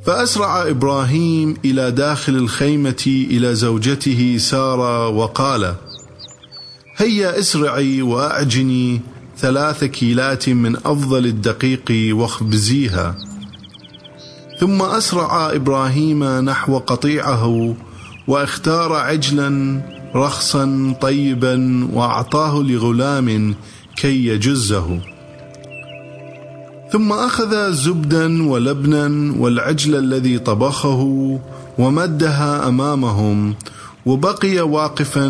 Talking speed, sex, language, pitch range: 70 wpm, male, English, 110-145 Hz